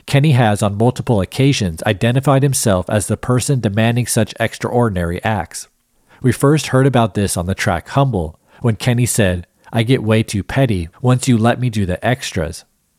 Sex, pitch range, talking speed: male, 100-130 Hz, 175 wpm